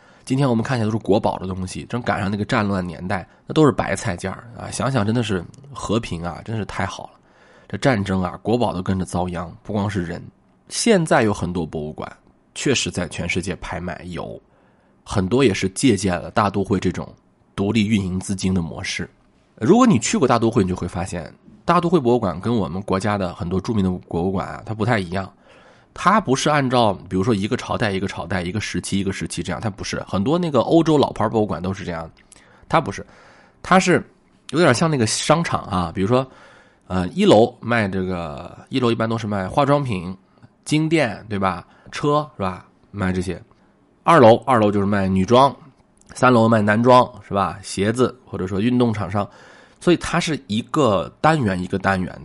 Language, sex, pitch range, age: Chinese, male, 90-120 Hz, 20-39